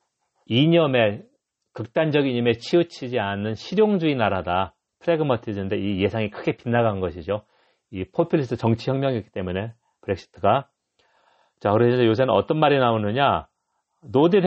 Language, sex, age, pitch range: Korean, male, 40-59, 100-140 Hz